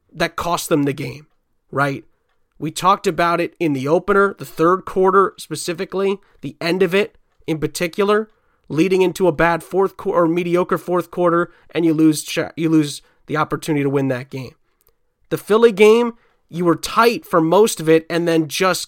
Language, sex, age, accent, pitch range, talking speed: English, male, 30-49, American, 150-190 Hz, 180 wpm